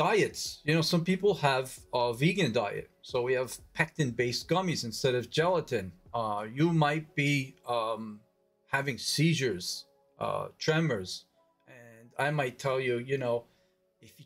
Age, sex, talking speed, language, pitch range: 40-59, male, 150 wpm, English, 125-160 Hz